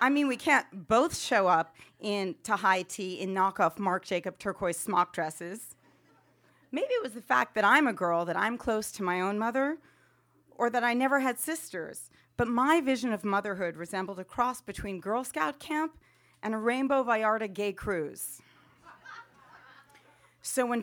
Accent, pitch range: American, 195-245 Hz